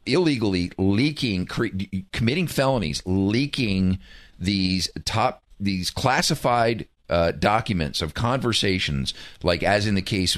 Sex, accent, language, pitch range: male, American, English, 90-110 Hz